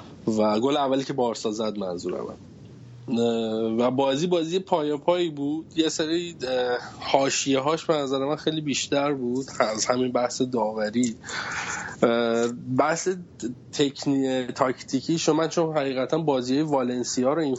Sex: male